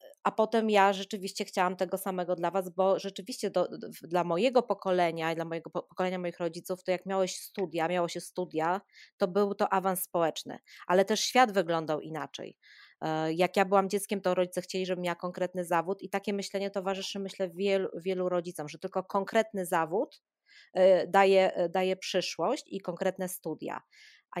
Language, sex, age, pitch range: Polish, female, 20-39, 175-200 Hz